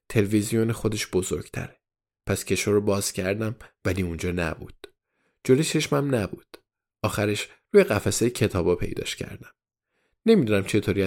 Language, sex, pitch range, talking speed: Persian, male, 95-130 Hz, 120 wpm